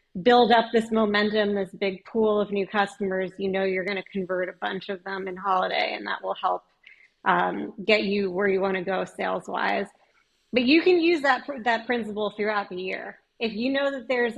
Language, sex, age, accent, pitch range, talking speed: English, female, 30-49, American, 200-235 Hz, 215 wpm